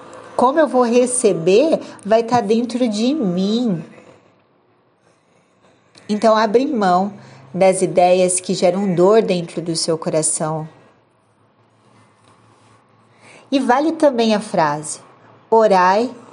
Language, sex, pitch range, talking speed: Portuguese, female, 175-240 Hz, 100 wpm